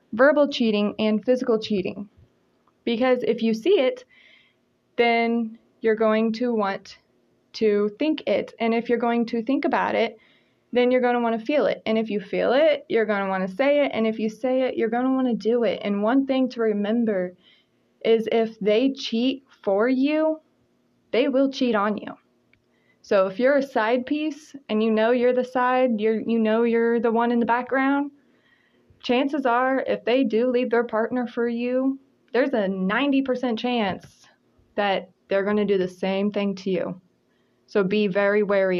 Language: English